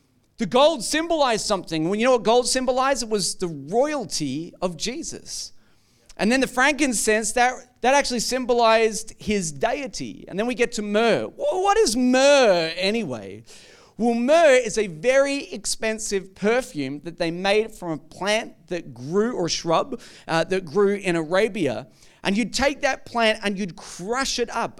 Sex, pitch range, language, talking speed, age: male, 185-245 Hz, English, 165 wpm, 40-59